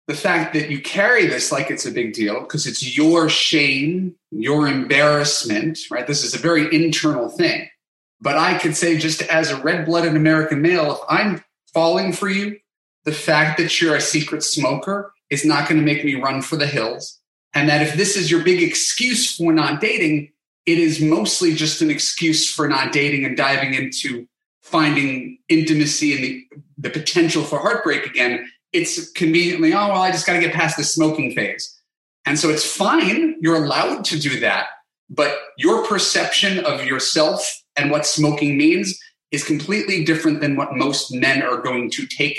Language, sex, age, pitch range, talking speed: English, male, 30-49, 145-185 Hz, 185 wpm